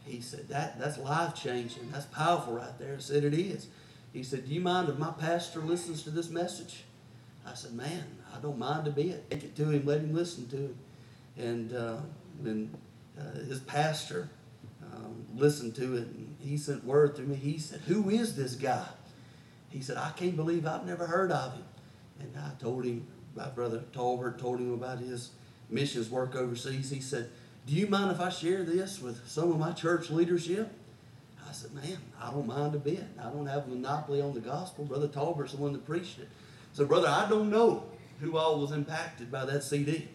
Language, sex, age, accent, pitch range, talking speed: English, male, 40-59, American, 125-155 Hz, 210 wpm